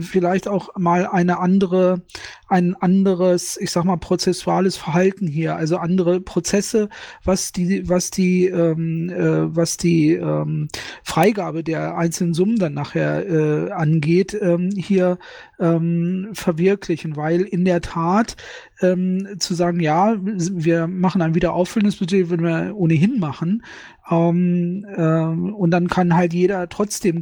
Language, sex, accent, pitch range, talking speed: German, male, German, 170-190 Hz, 135 wpm